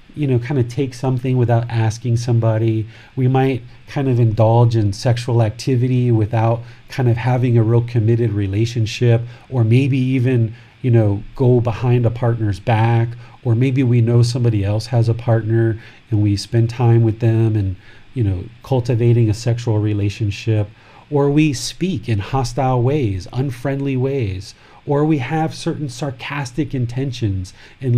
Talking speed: 155 wpm